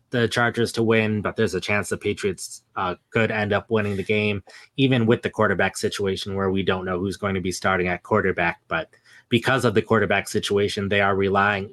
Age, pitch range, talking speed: 20-39, 100-110 Hz, 215 wpm